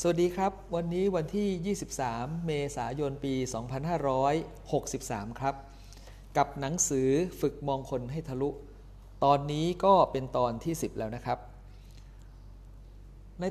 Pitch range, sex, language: 115-150 Hz, male, Thai